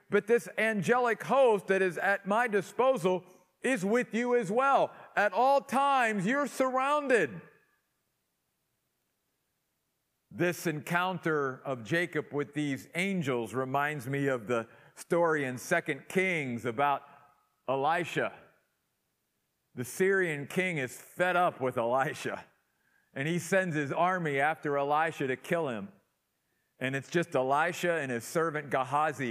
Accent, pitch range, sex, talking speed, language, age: American, 130-185 Hz, male, 125 wpm, English, 50-69